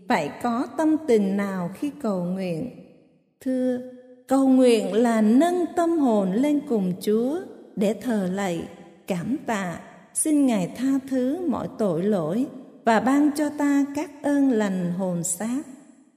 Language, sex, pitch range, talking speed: Vietnamese, female, 205-275 Hz, 145 wpm